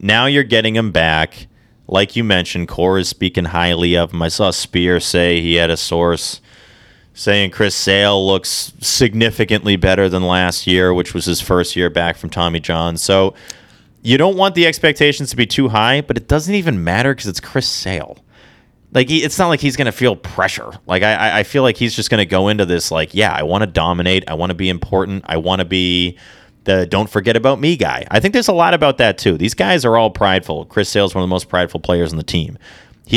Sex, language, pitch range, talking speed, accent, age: male, English, 85-110 Hz, 230 wpm, American, 30-49